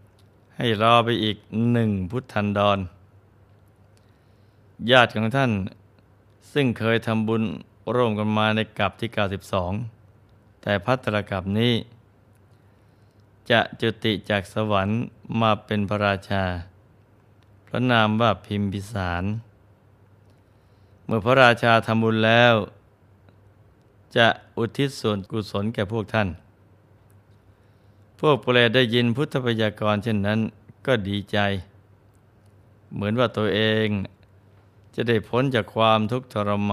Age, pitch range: 20-39, 100-110 Hz